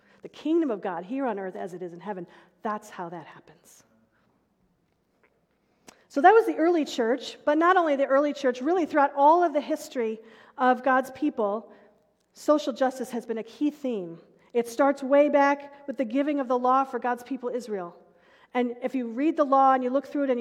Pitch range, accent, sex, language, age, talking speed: 230-290 Hz, American, female, English, 40-59, 205 wpm